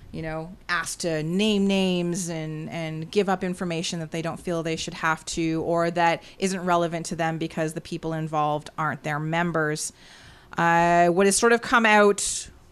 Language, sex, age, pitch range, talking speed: English, female, 30-49, 165-200 Hz, 185 wpm